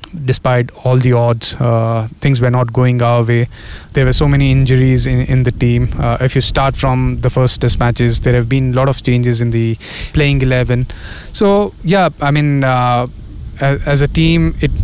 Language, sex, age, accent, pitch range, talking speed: English, male, 20-39, Indian, 120-145 Hz, 200 wpm